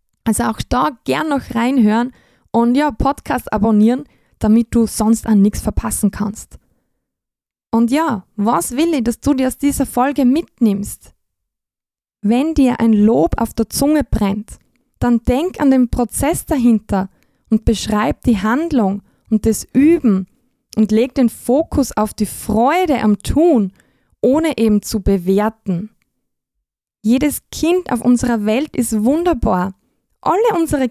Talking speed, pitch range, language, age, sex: 140 wpm, 220-275 Hz, German, 20-39, female